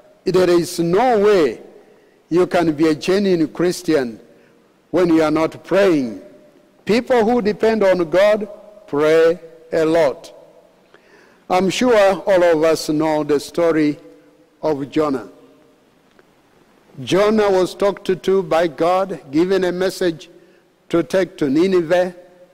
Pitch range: 160-200 Hz